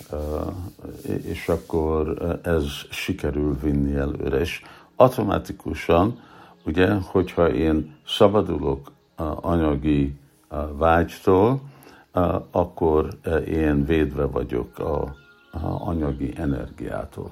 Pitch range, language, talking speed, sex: 75-85 Hz, Hungarian, 75 wpm, male